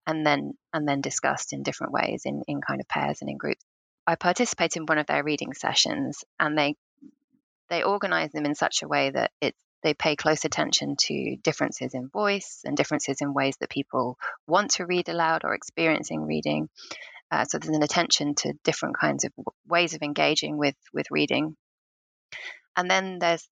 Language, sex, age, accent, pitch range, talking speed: English, female, 20-39, British, 140-195 Hz, 190 wpm